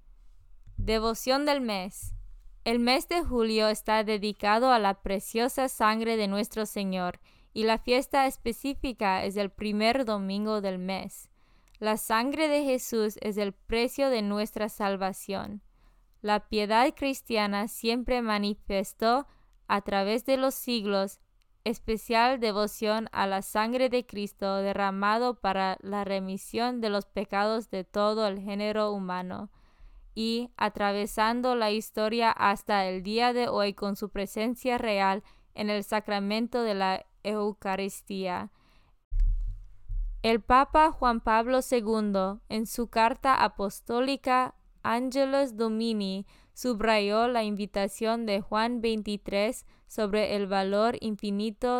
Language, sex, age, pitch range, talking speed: Spanish, female, 20-39, 200-235 Hz, 120 wpm